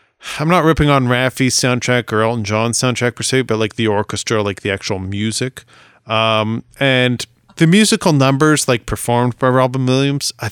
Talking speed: 175 wpm